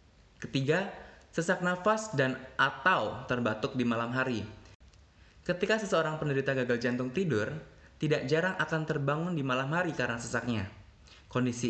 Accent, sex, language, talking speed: Indonesian, male, English, 130 wpm